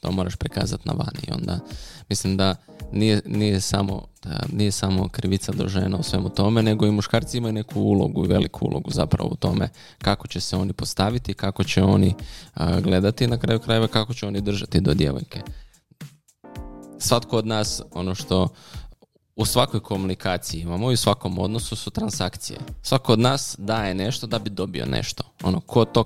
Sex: male